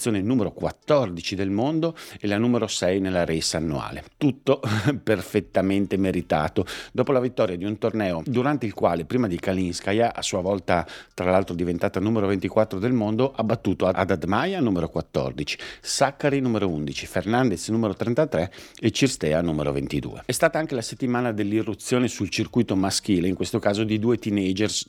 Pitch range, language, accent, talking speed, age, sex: 90-115 Hz, Italian, native, 160 wpm, 50-69, male